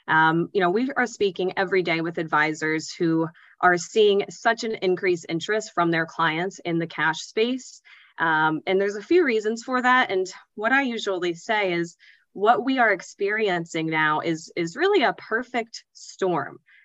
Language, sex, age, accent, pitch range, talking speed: English, female, 20-39, American, 170-210 Hz, 170 wpm